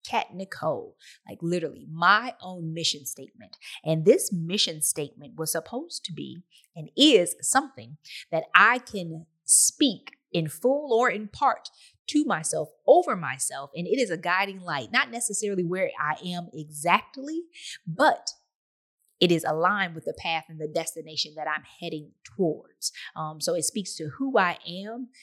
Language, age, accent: English, 20-39, American